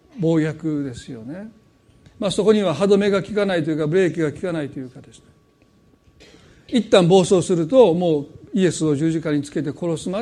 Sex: male